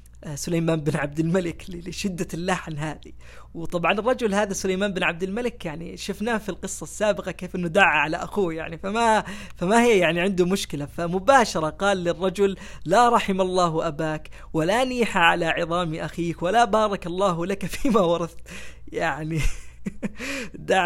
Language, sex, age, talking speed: Arabic, female, 20-39, 145 wpm